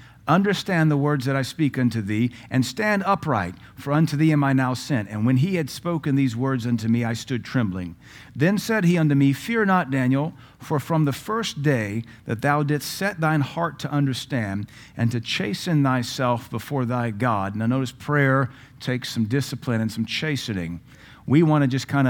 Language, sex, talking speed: English, male, 195 wpm